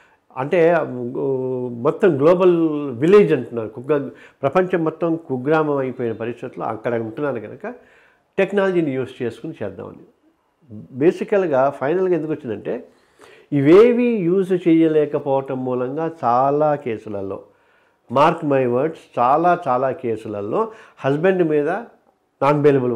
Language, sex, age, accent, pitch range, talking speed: Telugu, male, 50-69, native, 120-170 Hz, 95 wpm